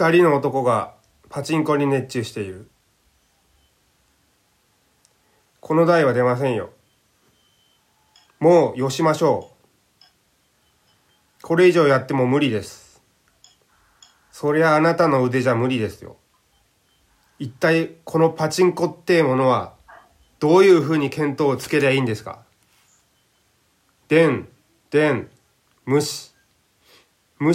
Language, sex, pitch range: Japanese, male, 105-160 Hz